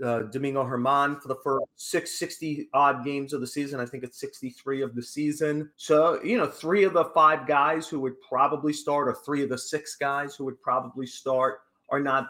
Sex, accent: male, American